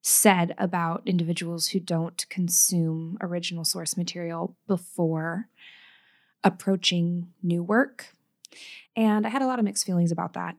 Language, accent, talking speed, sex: English, American, 130 wpm, female